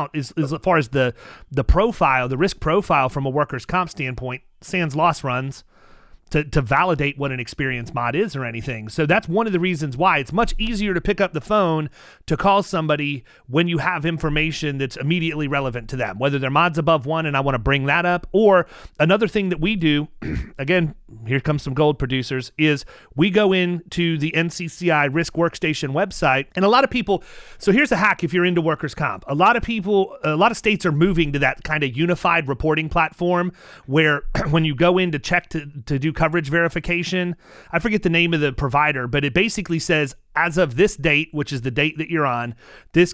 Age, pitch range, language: 30-49, 140-175 Hz, English